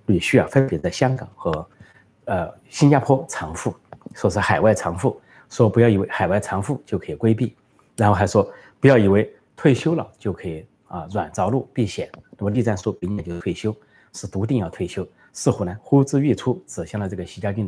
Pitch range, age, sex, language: 95-125 Hz, 30-49, male, Chinese